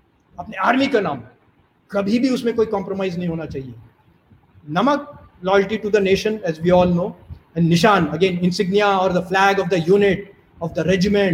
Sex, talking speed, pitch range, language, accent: male, 75 wpm, 180-265 Hz, Hindi, native